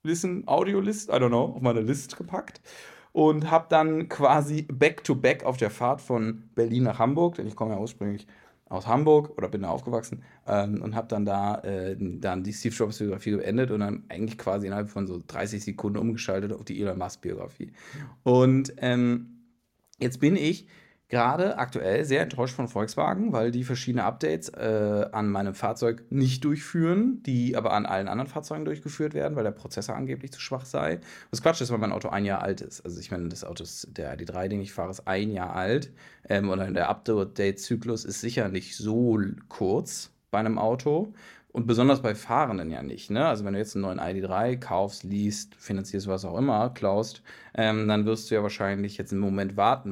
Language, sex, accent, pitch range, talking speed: English, male, German, 100-130 Hz, 200 wpm